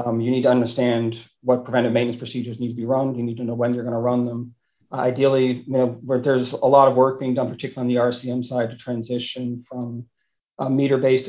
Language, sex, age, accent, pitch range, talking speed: English, male, 40-59, American, 120-130 Hz, 240 wpm